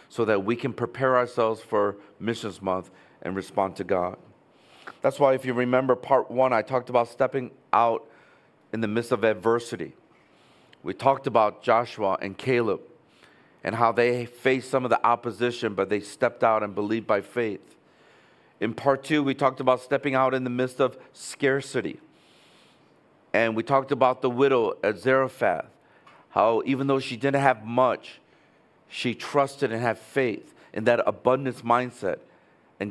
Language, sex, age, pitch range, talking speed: English, male, 50-69, 115-135 Hz, 165 wpm